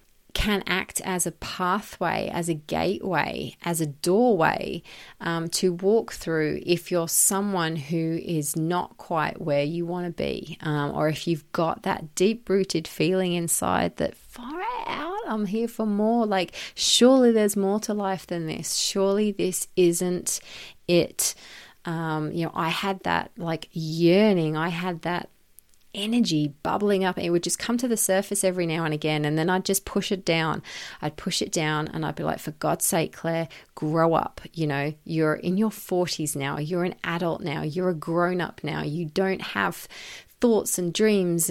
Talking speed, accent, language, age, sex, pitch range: 175 wpm, Australian, English, 30-49, female, 160-195 Hz